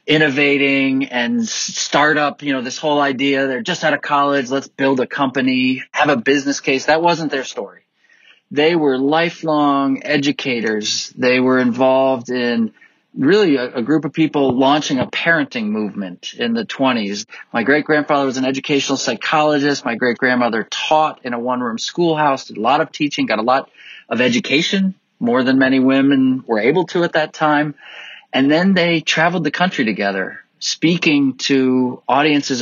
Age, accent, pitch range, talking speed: 30-49, American, 130-160 Hz, 160 wpm